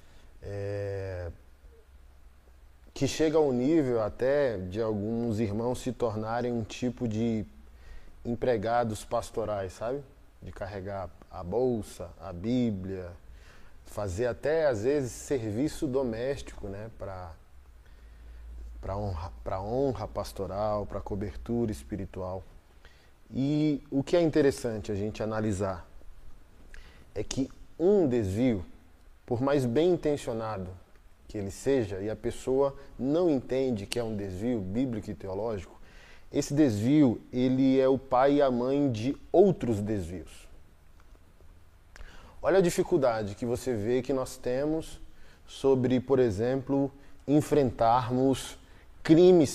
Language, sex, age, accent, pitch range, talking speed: Portuguese, male, 20-39, Brazilian, 90-130 Hz, 115 wpm